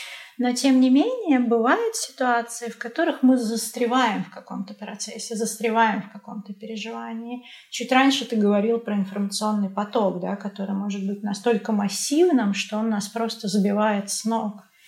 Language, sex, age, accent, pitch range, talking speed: Russian, female, 30-49, native, 205-235 Hz, 145 wpm